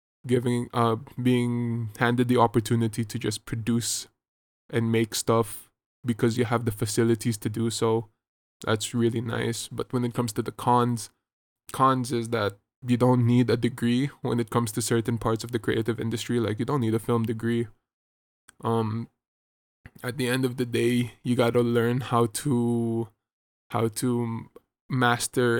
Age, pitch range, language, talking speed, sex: 20-39, 115-125 Hz, English, 165 wpm, male